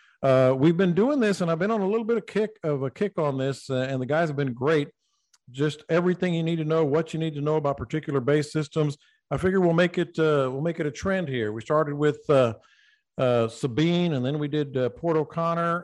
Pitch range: 130-160 Hz